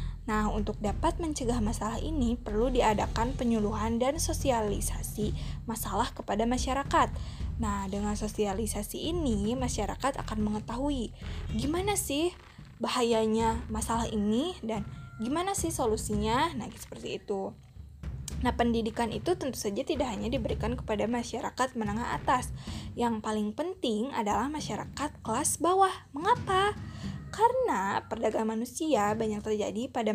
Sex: female